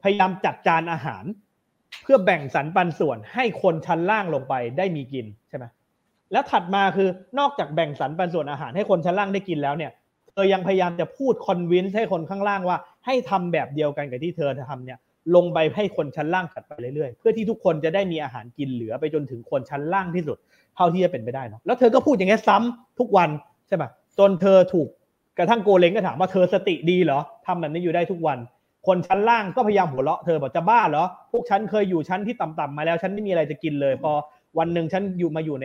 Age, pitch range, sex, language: 30-49, 150-195 Hz, male, Thai